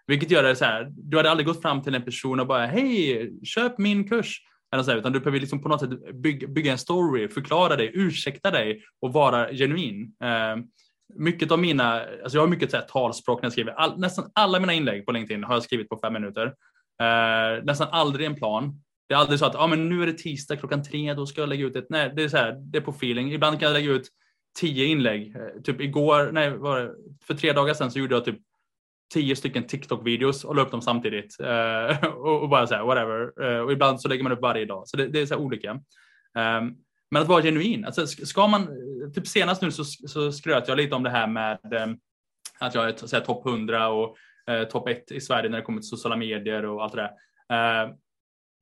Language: Swedish